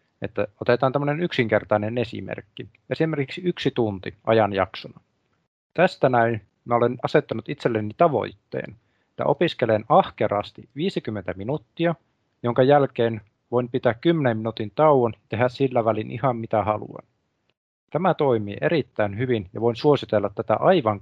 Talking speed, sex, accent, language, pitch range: 125 wpm, male, native, Finnish, 110-135 Hz